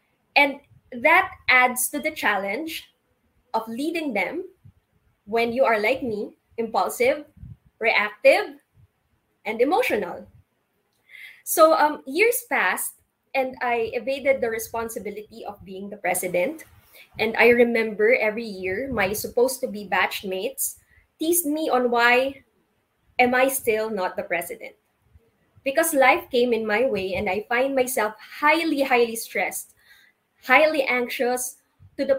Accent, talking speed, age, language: Filipino, 130 wpm, 20-39, English